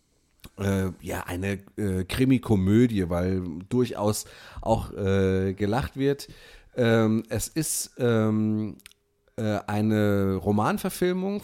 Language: German